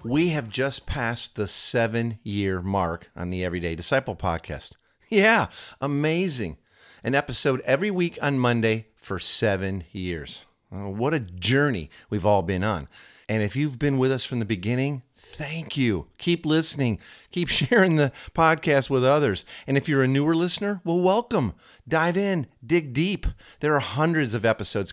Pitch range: 95-140 Hz